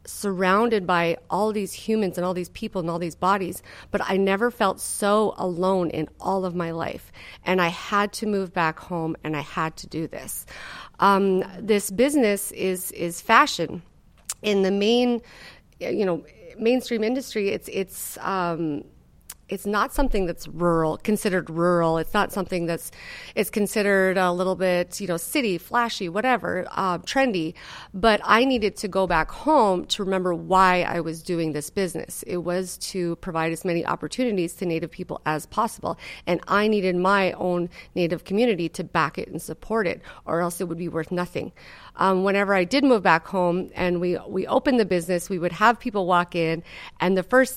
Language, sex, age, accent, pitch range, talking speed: English, female, 40-59, American, 175-210 Hz, 180 wpm